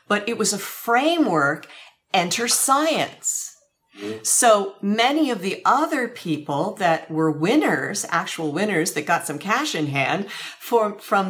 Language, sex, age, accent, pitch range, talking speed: English, female, 50-69, American, 165-235 Hz, 135 wpm